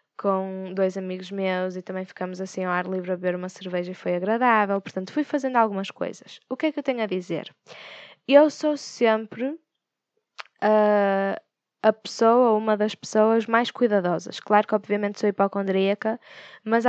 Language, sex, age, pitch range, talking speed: Portuguese, female, 10-29, 190-225 Hz, 170 wpm